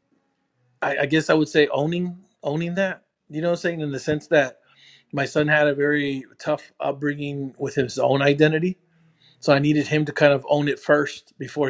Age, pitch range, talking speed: 30-49, 135-160 Hz, 200 wpm